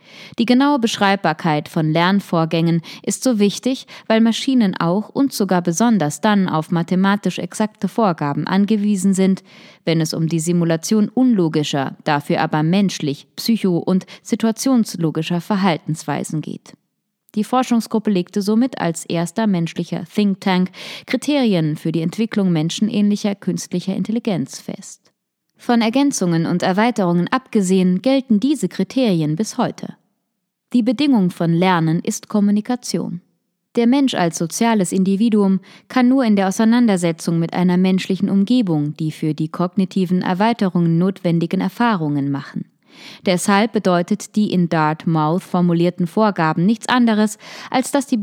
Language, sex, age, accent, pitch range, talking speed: German, female, 20-39, German, 175-220 Hz, 125 wpm